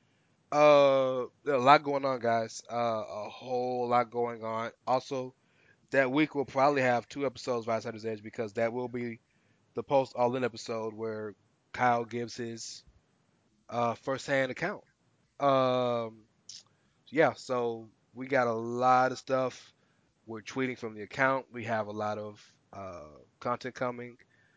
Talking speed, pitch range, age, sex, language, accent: 150 wpm, 115-140 Hz, 20-39, male, English, American